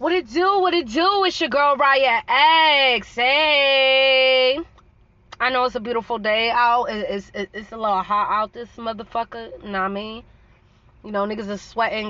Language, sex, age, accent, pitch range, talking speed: English, female, 20-39, American, 195-250 Hz, 175 wpm